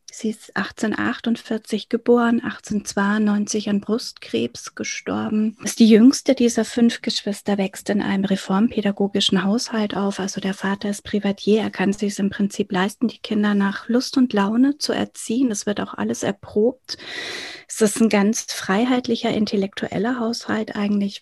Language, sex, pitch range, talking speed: German, female, 205-245 Hz, 150 wpm